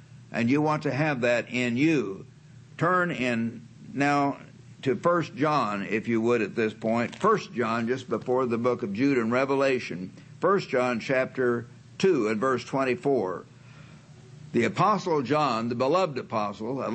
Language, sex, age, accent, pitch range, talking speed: English, male, 60-79, American, 125-155 Hz, 155 wpm